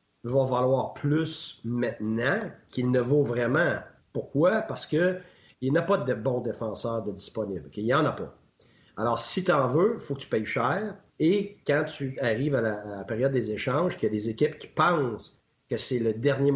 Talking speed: 195 wpm